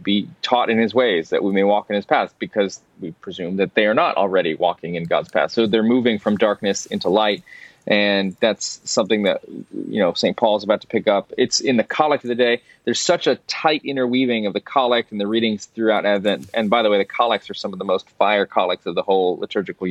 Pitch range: 105-130 Hz